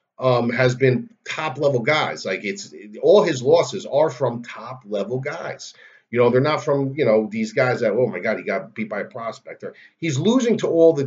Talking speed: 220 wpm